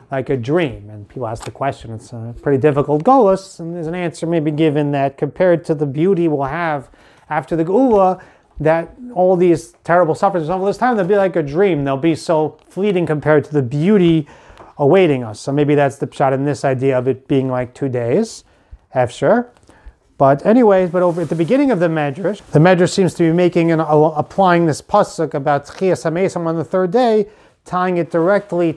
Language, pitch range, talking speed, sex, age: English, 140-175 Hz, 200 wpm, male, 30-49